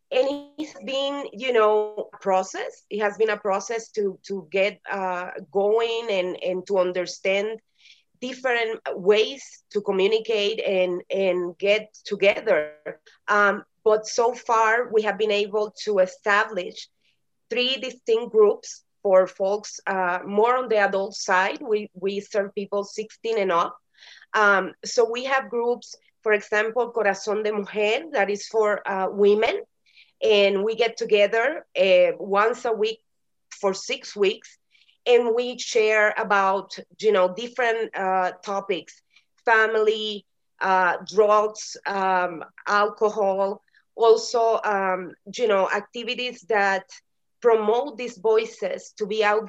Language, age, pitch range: English, 30-49, 195-235 Hz